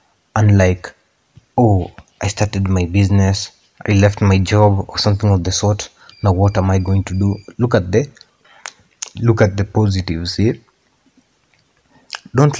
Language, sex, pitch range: Swahili, male, 95-115 Hz